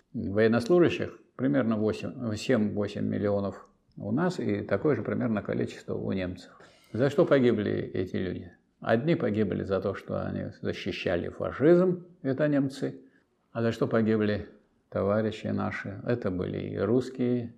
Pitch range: 105-135 Hz